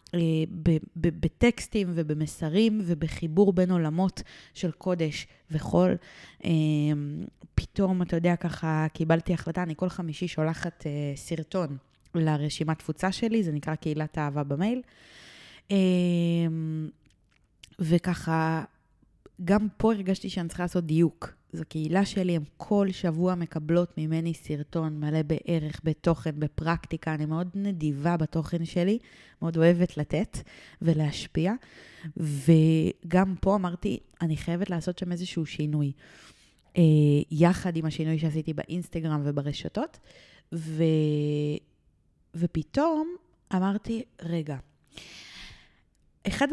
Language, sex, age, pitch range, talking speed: Hebrew, female, 20-39, 155-180 Hz, 100 wpm